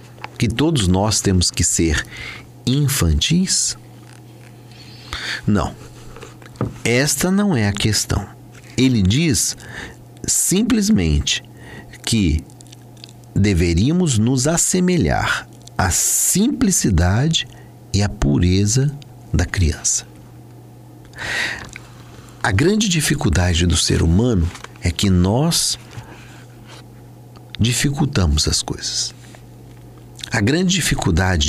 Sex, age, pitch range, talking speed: male, 50-69, 95-125 Hz, 80 wpm